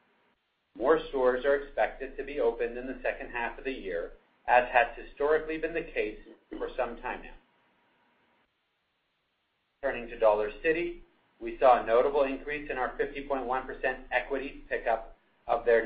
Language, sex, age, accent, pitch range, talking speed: English, male, 50-69, American, 125-165 Hz, 150 wpm